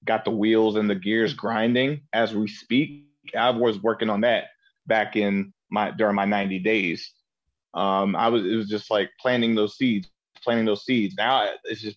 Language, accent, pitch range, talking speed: English, American, 100-115 Hz, 190 wpm